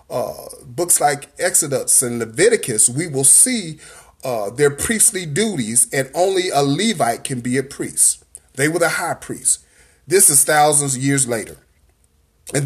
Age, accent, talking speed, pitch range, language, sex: 30-49, American, 155 wpm, 130-185 Hz, English, male